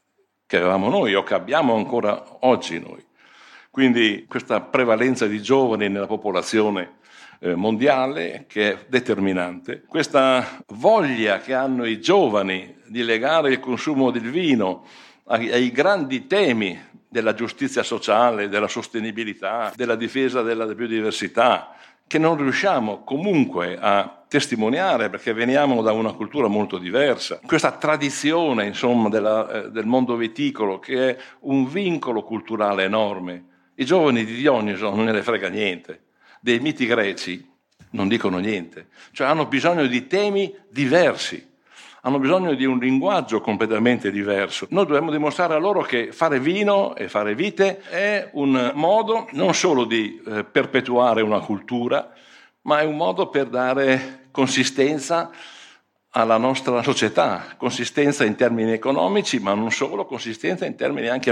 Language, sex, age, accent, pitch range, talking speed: English, male, 60-79, Italian, 110-140 Hz, 135 wpm